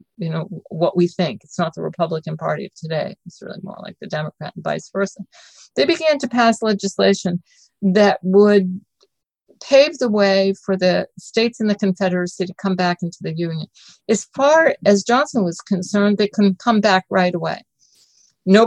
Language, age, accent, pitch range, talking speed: English, 50-69, American, 180-215 Hz, 180 wpm